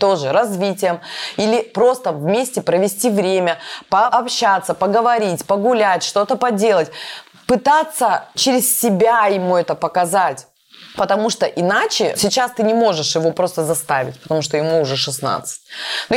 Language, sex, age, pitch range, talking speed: Russian, female, 20-39, 160-230 Hz, 125 wpm